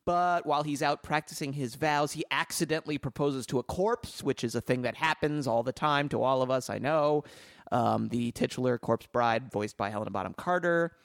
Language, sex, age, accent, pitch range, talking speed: English, male, 30-49, American, 120-155 Hz, 205 wpm